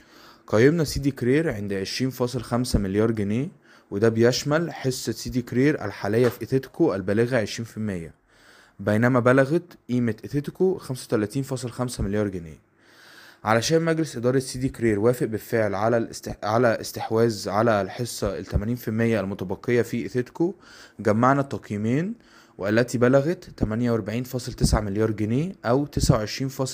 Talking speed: 115 wpm